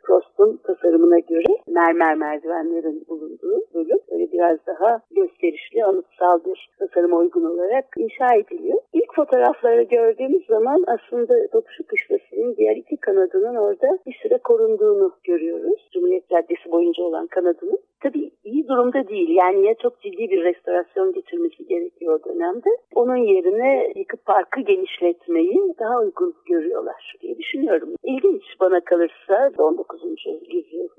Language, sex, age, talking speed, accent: Turkish, female, 60-79, 130 wpm, native